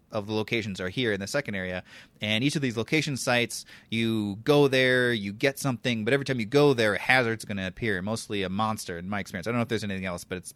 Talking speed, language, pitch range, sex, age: 265 wpm, English, 105-140 Hz, male, 30-49